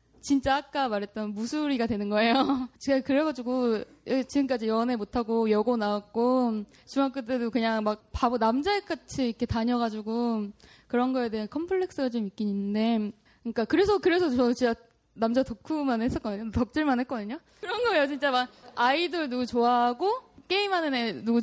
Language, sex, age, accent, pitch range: Korean, female, 20-39, native, 230-345 Hz